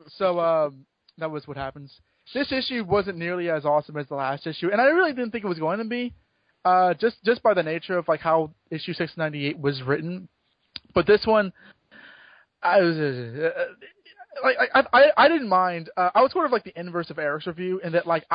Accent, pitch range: American, 150-205 Hz